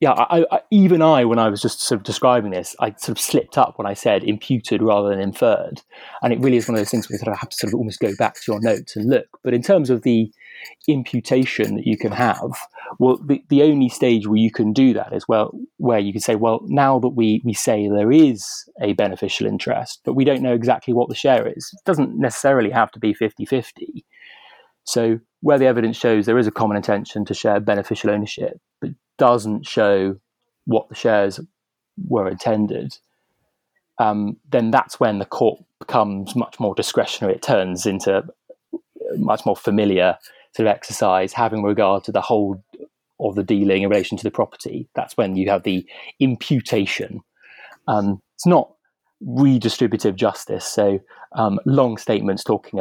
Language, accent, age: English, British, 30-49